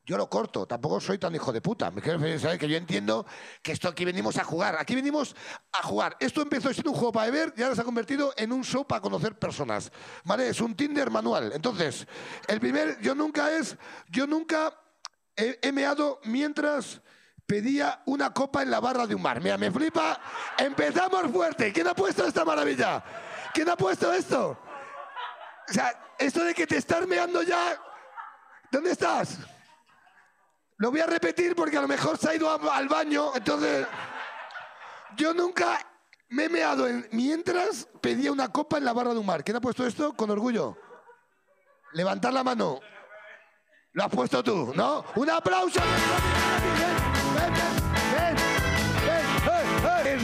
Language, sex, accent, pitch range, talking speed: Spanish, male, Mexican, 230-315 Hz, 170 wpm